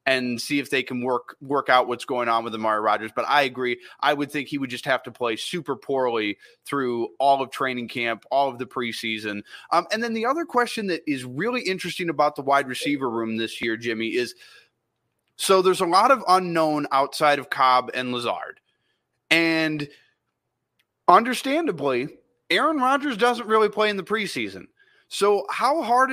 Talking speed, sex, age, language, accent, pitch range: 185 wpm, male, 20-39, English, American, 130-185 Hz